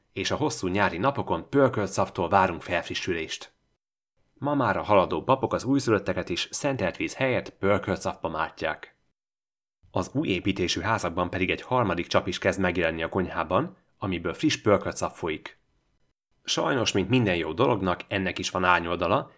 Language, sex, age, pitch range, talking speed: Hungarian, male, 30-49, 80-100 Hz, 145 wpm